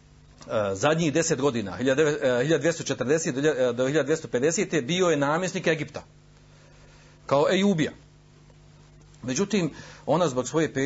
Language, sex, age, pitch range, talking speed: Croatian, male, 50-69, 130-165 Hz, 90 wpm